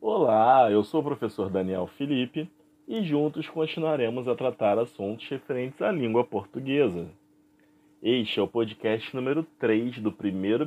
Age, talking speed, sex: 20-39, 140 wpm, male